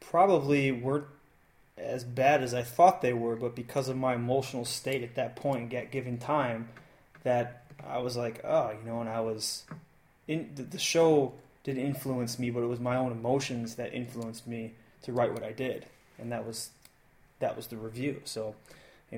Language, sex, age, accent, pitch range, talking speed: English, male, 20-39, American, 115-135 Hz, 190 wpm